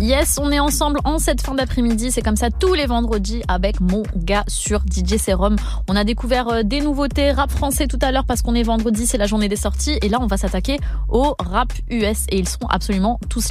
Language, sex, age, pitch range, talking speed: French, female, 20-39, 205-270 Hz, 230 wpm